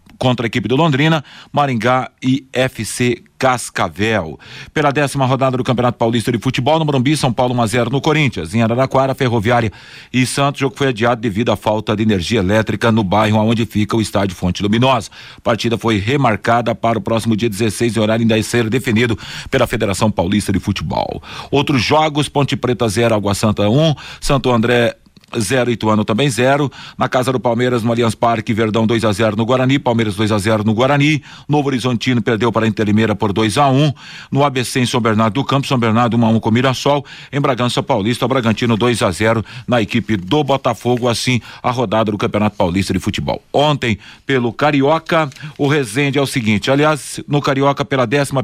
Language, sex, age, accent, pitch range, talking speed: Portuguese, male, 40-59, Brazilian, 115-135 Hz, 185 wpm